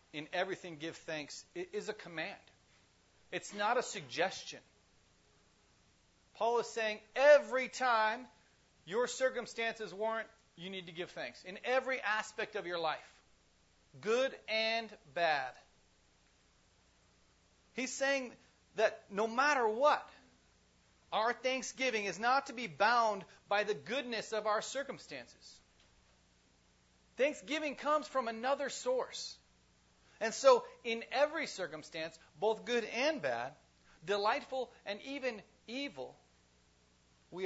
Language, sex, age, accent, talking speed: English, male, 40-59, American, 115 wpm